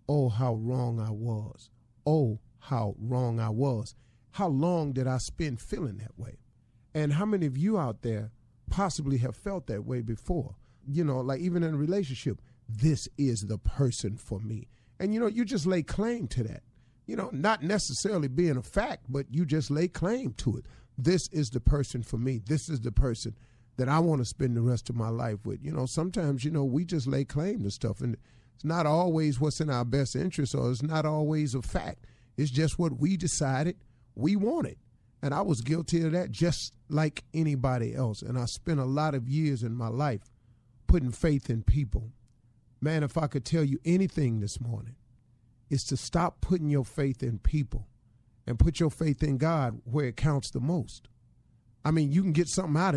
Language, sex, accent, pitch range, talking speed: English, male, American, 120-155 Hz, 205 wpm